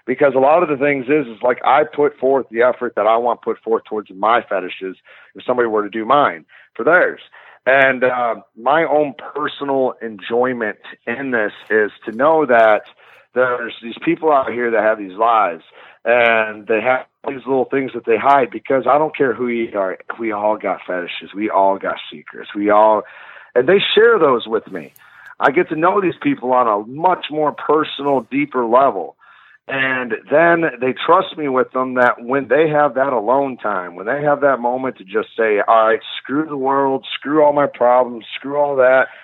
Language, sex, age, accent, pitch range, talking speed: English, male, 40-59, American, 120-145 Hz, 200 wpm